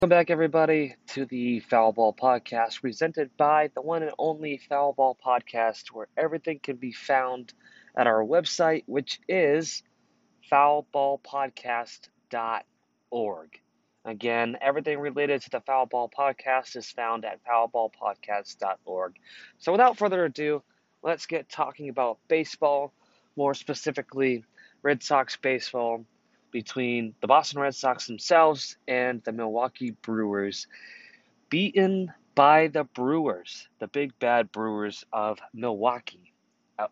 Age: 20-39